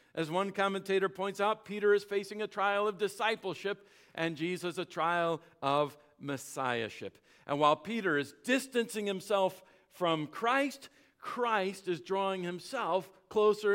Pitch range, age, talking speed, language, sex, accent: 180-270 Hz, 50-69, 135 wpm, English, male, American